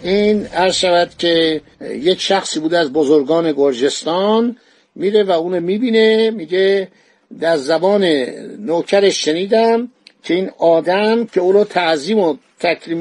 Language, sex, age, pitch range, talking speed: Persian, male, 60-79, 180-225 Hz, 120 wpm